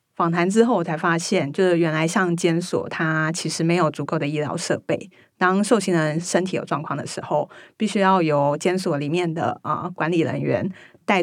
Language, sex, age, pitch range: Chinese, female, 30-49, 160-190 Hz